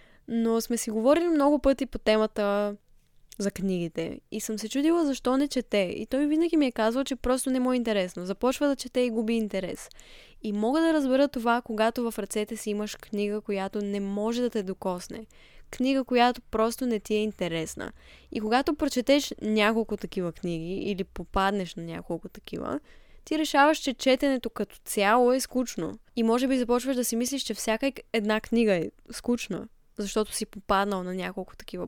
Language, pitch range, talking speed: Bulgarian, 205-245 Hz, 185 wpm